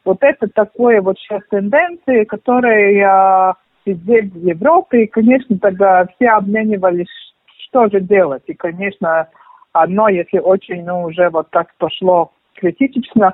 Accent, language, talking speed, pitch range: native, Russian, 135 wpm, 170-230 Hz